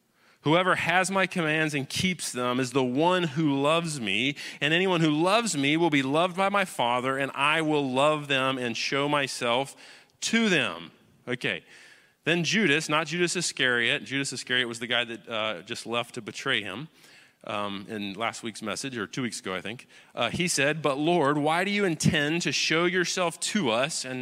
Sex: male